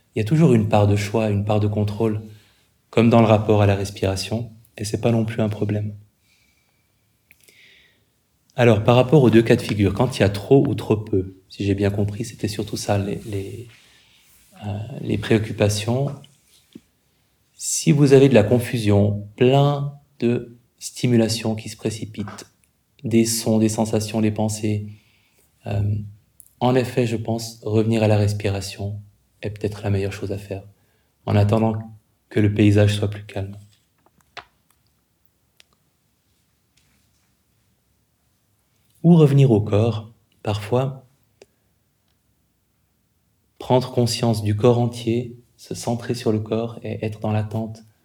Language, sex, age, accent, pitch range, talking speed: French, male, 20-39, French, 105-115 Hz, 140 wpm